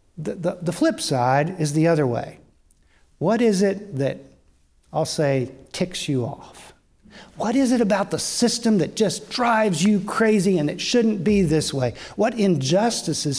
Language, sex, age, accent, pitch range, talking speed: English, male, 50-69, American, 145-210 Hz, 165 wpm